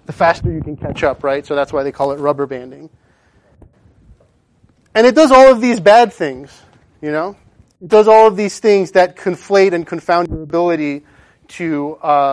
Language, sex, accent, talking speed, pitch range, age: English, male, American, 190 wpm, 140-185 Hz, 30-49